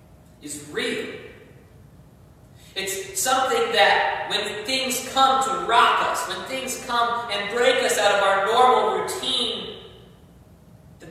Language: English